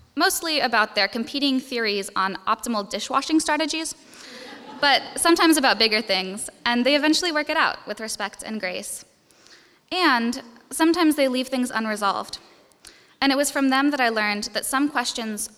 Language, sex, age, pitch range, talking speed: English, female, 10-29, 205-265 Hz, 160 wpm